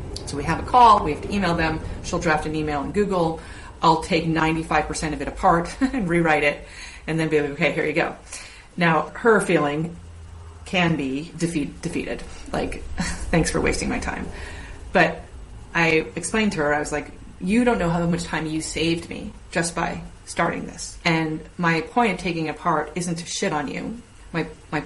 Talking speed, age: 195 wpm, 30-49